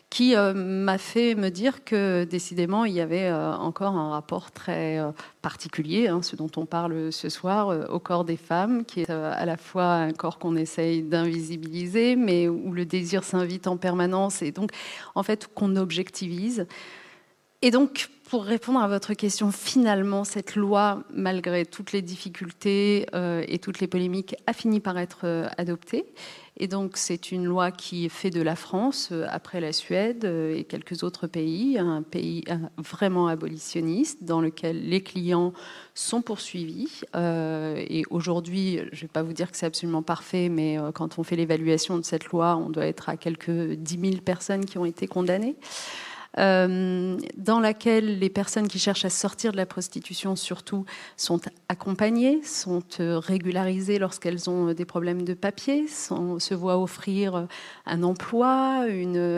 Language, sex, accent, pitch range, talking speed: French, female, French, 170-200 Hz, 160 wpm